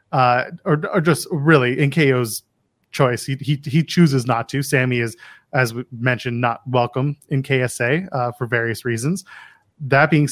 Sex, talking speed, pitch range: male, 170 wpm, 125-150 Hz